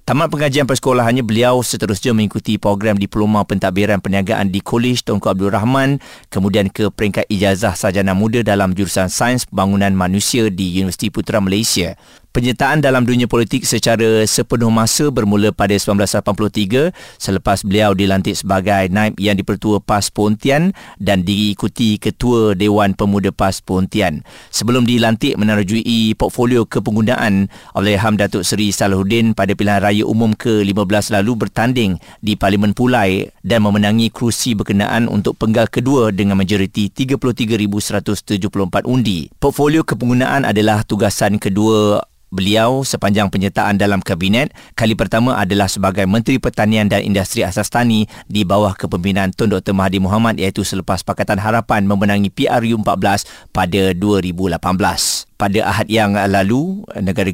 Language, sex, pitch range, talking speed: Malay, male, 100-115 Hz, 135 wpm